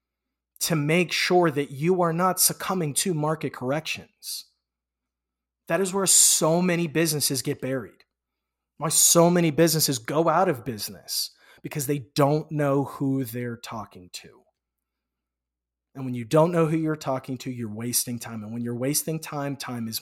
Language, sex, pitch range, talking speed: English, male, 130-170 Hz, 160 wpm